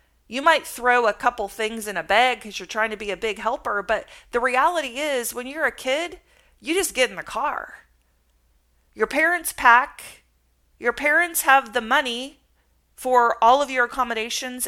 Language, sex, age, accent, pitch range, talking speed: English, female, 40-59, American, 200-255 Hz, 180 wpm